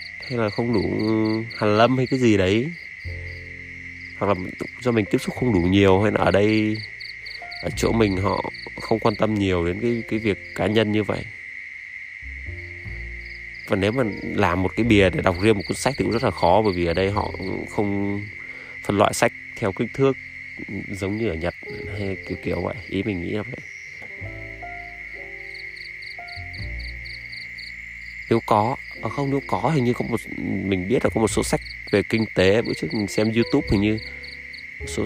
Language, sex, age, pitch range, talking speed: Vietnamese, male, 20-39, 90-115 Hz, 190 wpm